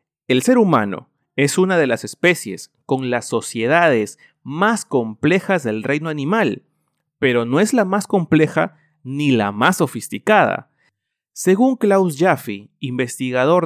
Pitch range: 125-190 Hz